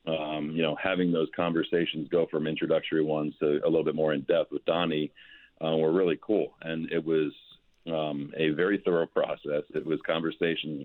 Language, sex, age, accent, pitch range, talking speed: English, male, 50-69, American, 75-85 Hz, 190 wpm